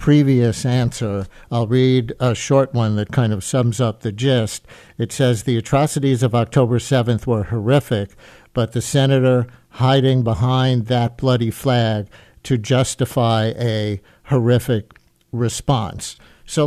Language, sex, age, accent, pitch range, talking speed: English, male, 60-79, American, 110-130 Hz, 135 wpm